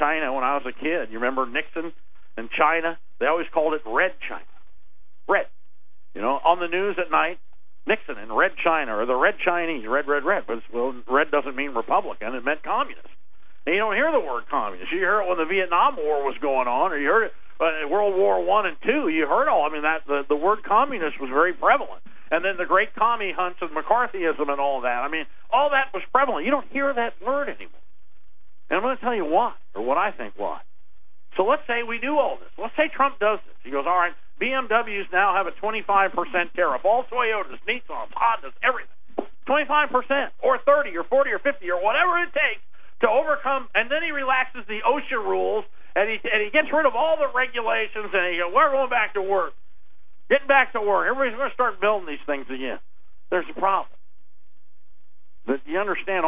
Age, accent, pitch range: 50-69, American, 155-255 Hz